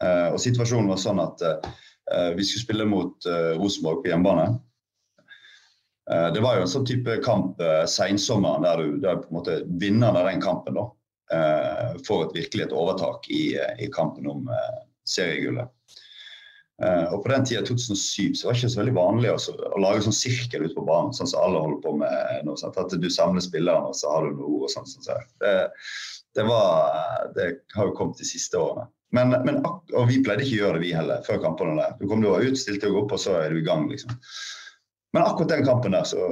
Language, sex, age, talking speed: English, male, 30-49, 210 wpm